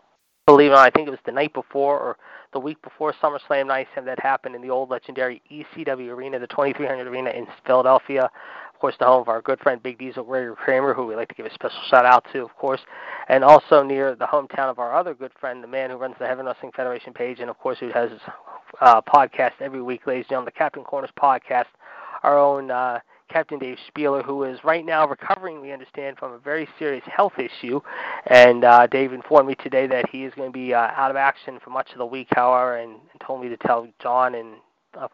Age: 20-39